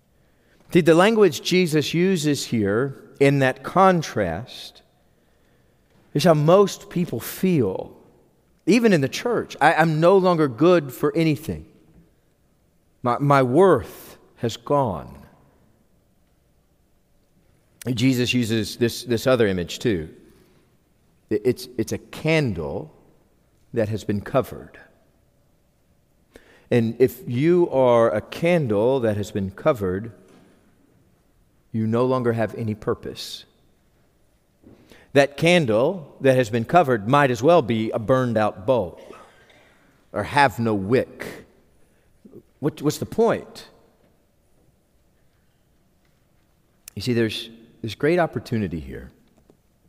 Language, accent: English, American